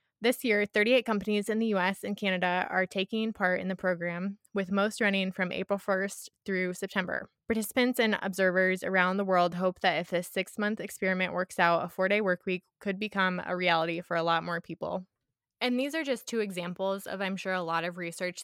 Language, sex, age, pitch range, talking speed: English, female, 20-39, 175-200 Hz, 200 wpm